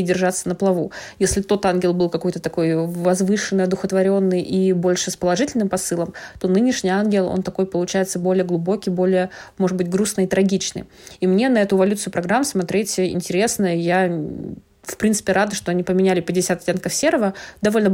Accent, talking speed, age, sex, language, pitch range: native, 165 wpm, 20-39, female, Russian, 175-200 Hz